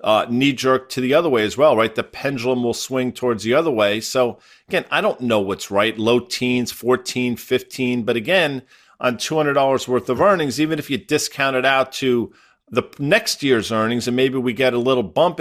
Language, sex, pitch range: English, male, 120-145 Hz